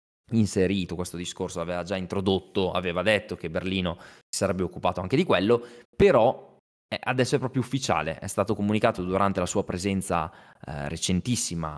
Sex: male